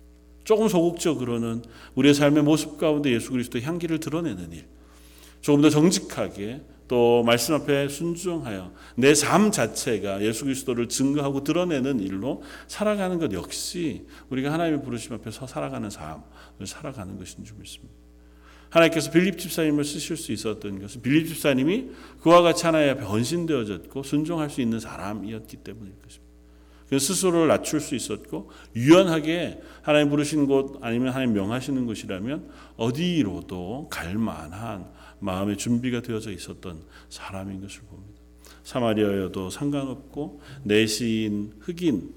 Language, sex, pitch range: Korean, male, 100-150 Hz